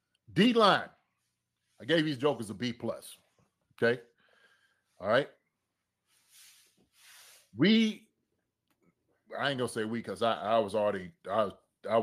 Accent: American